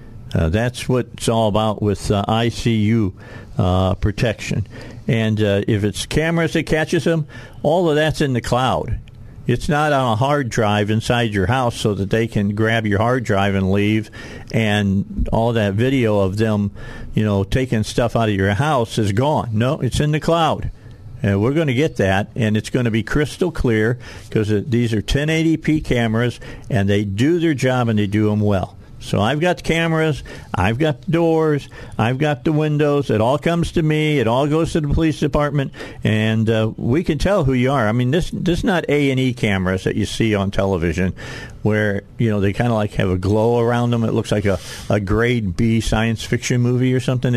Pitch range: 105-130 Hz